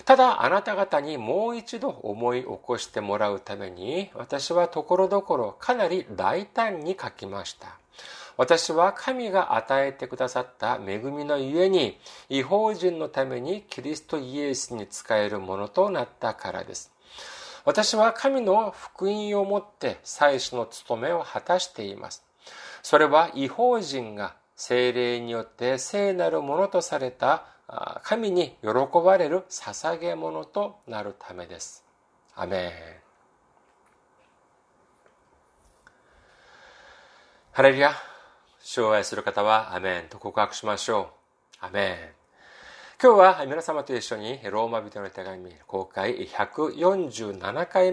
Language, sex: Japanese, male